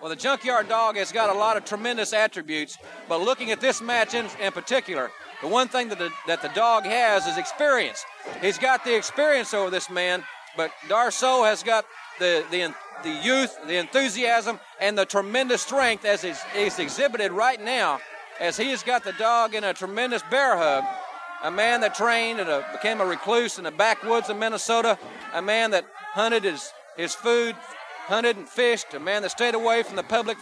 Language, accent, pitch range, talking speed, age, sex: English, American, 210-260 Hz, 195 wpm, 40-59, male